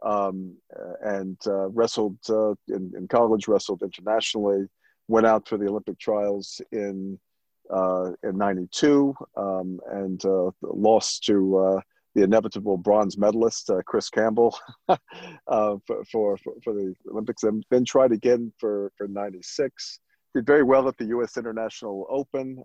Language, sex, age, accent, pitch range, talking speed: English, male, 50-69, American, 95-115 Hz, 145 wpm